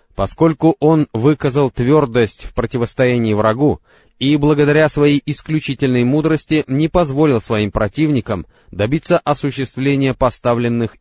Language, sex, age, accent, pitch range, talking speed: Russian, male, 20-39, native, 110-150 Hz, 105 wpm